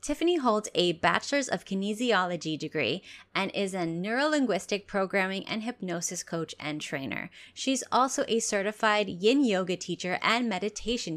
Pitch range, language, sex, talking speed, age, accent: 175-220 Hz, English, female, 140 wpm, 20-39, American